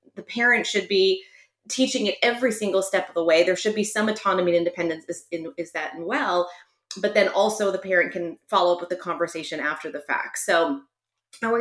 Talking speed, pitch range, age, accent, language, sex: 205 wpm, 175-230 Hz, 30-49, American, English, female